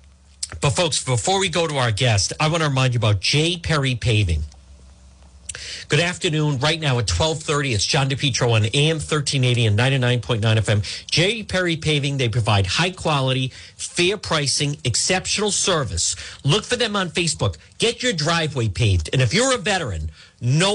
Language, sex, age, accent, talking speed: English, male, 50-69, American, 165 wpm